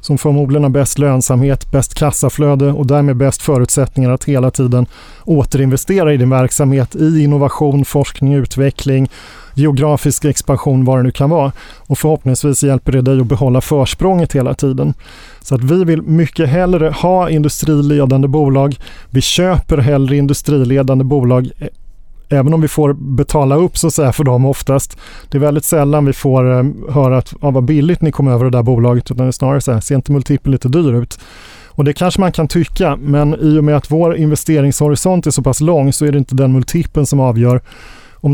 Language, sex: Swedish, male